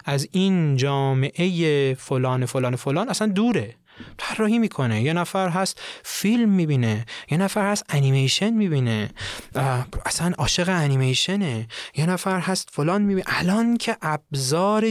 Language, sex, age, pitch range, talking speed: Persian, male, 30-49, 130-180 Hz, 125 wpm